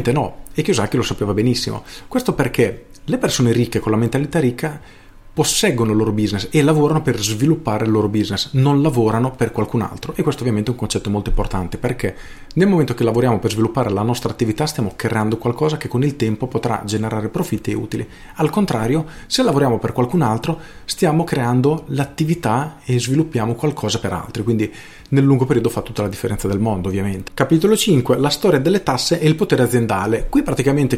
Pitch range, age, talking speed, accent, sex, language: 110-145 Hz, 40-59, 190 wpm, native, male, Italian